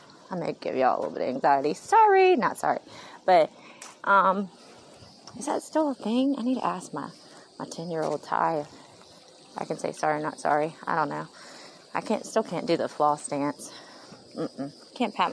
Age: 20-39